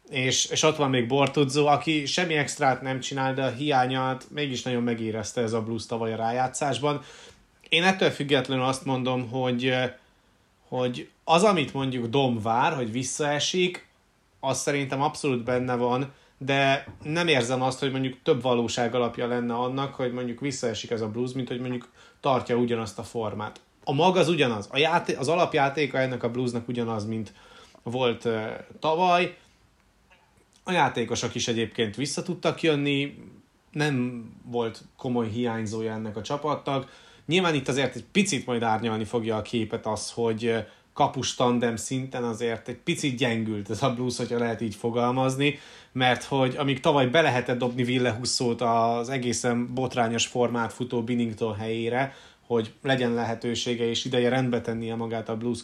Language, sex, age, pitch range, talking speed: Hungarian, male, 30-49, 115-140 Hz, 155 wpm